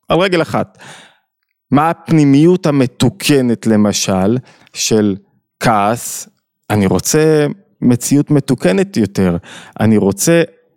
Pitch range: 120-165 Hz